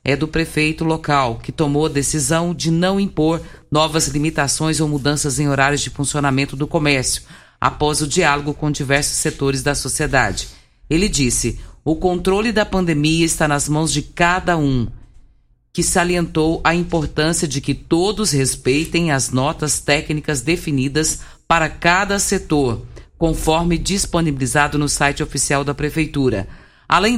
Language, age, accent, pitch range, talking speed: Portuguese, 50-69, Brazilian, 140-165 Hz, 140 wpm